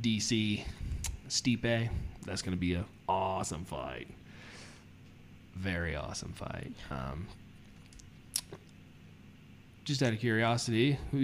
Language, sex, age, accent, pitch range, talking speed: English, male, 20-39, American, 95-115 Hz, 90 wpm